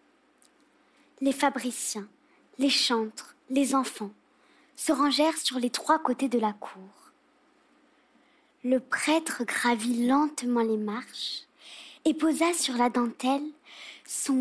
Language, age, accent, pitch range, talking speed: French, 20-39, French, 255-310 Hz, 110 wpm